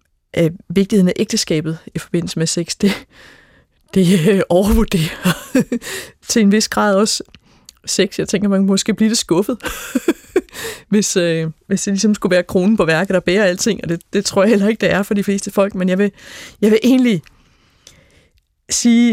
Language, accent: Danish, native